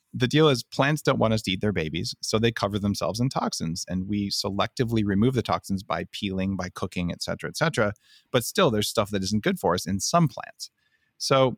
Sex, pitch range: male, 90-110 Hz